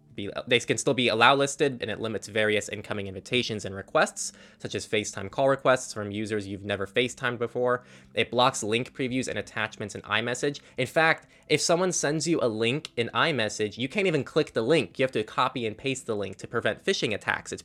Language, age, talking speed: English, 20-39, 205 wpm